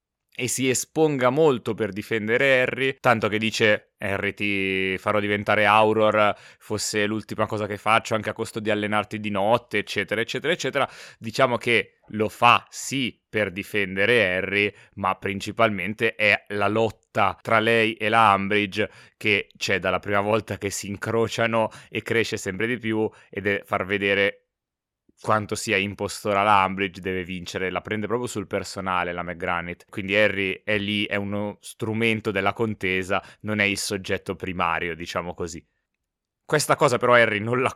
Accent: native